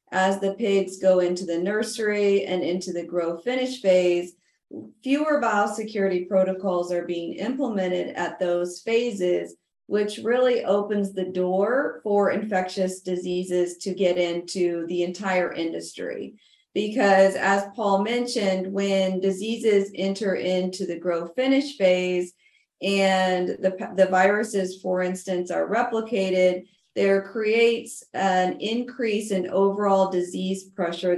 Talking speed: 125 wpm